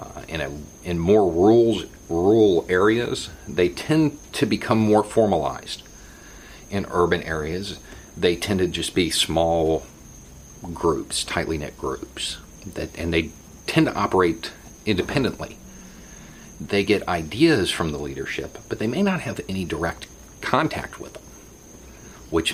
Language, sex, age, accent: English, male, 40-59, American